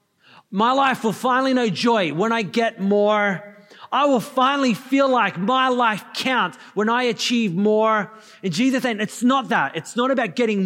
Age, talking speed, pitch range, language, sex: 30-49, 180 wpm, 155-220 Hz, English, male